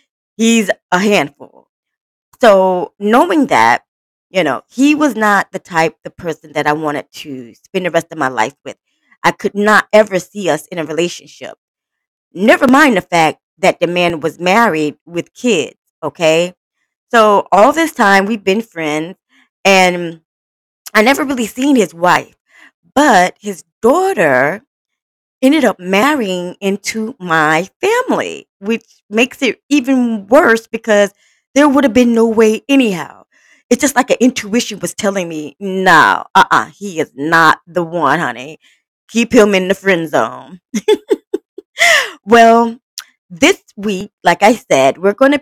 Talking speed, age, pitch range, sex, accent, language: 150 wpm, 20-39, 170-240 Hz, female, American, English